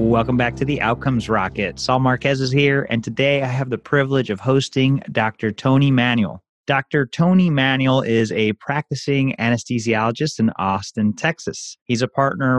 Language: English